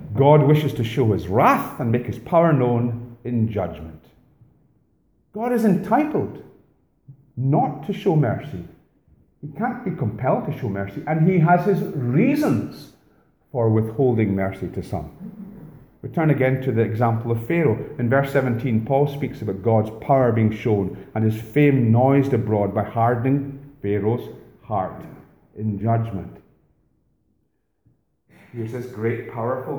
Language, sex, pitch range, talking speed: English, male, 110-145 Hz, 145 wpm